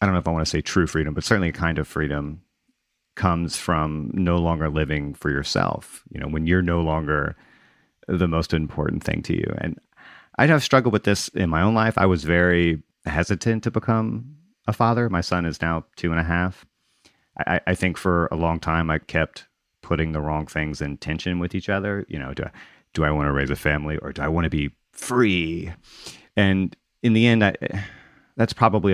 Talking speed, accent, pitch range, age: 220 wpm, American, 75-95 Hz, 30-49